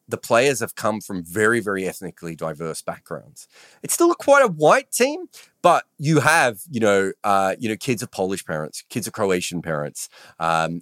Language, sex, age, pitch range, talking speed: English, male, 30-49, 95-145 Hz, 190 wpm